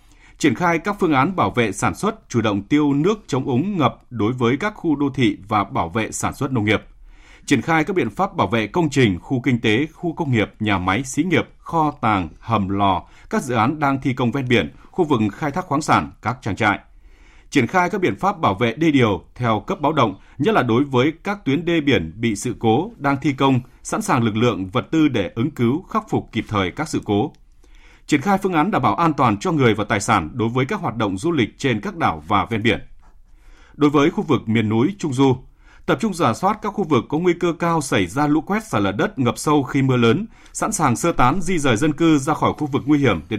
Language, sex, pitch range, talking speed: Vietnamese, male, 110-155 Hz, 255 wpm